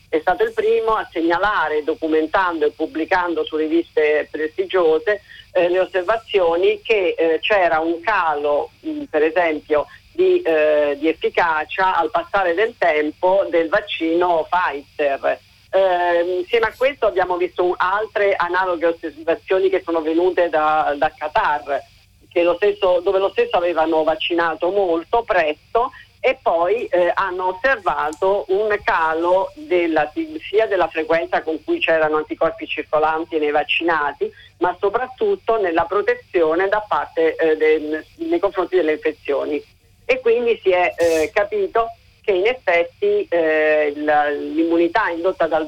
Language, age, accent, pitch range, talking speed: Italian, 40-59, native, 155-220 Hz, 125 wpm